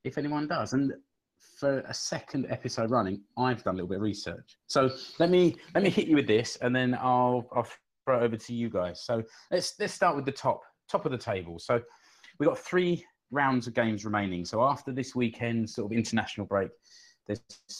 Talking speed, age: 210 wpm, 30-49